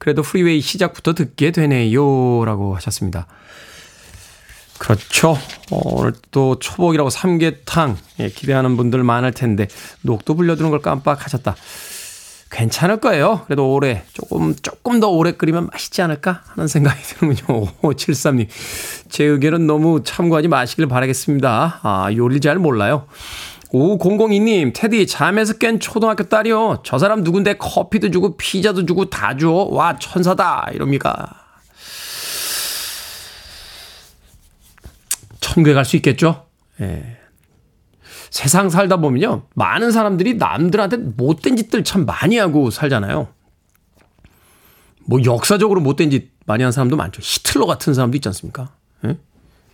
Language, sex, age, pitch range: Korean, male, 20-39, 115-175 Hz